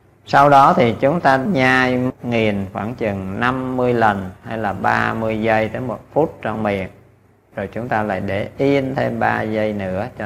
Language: Vietnamese